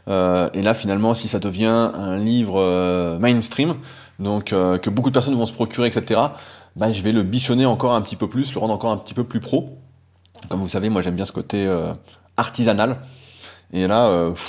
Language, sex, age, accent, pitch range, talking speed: French, male, 20-39, French, 100-135 Hz, 215 wpm